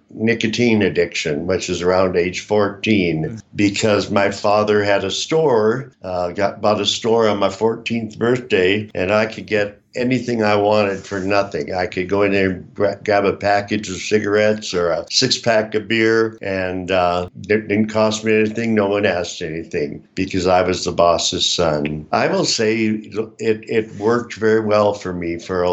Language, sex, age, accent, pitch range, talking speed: English, male, 60-79, American, 90-110 Hz, 175 wpm